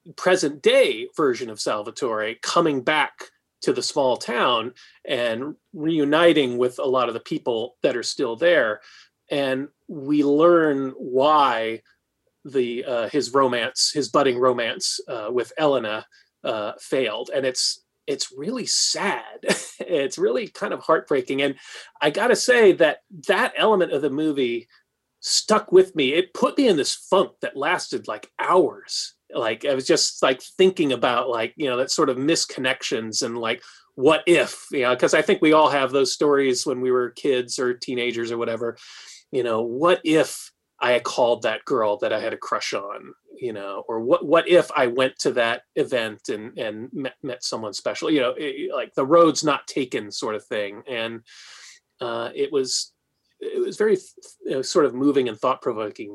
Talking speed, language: 175 wpm, English